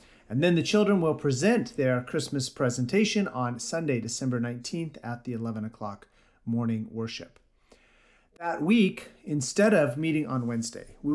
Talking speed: 145 wpm